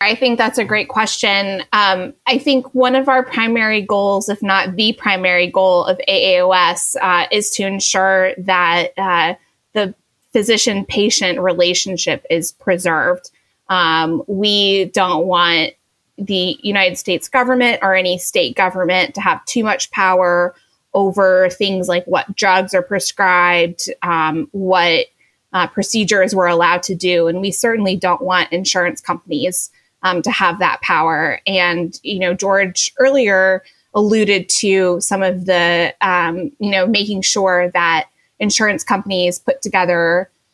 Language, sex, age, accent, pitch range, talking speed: English, female, 20-39, American, 180-215 Hz, 140 wpm